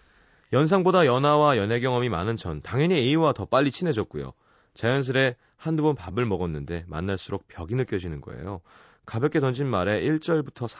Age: 30-49